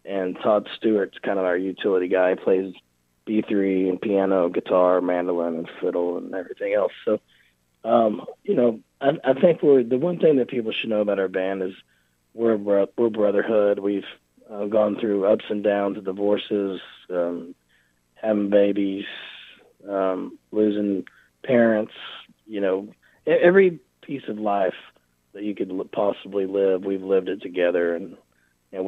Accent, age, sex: American, 30-49, male